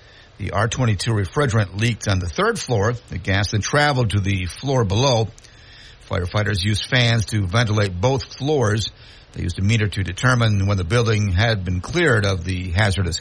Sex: male